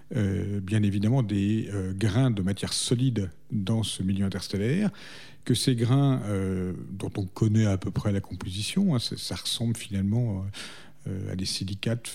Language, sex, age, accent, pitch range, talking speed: French, male, 50-69, French, 95-125 Hz, 175 wpm